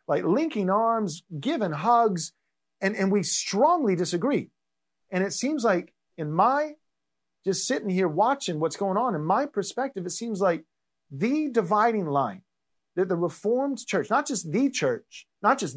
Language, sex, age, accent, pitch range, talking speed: English, male, 40-59, American, 140-210 Hz, 160 wpm